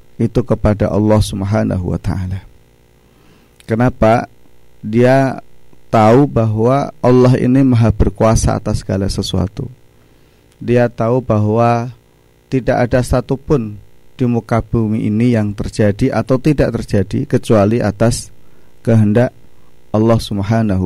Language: Indonesian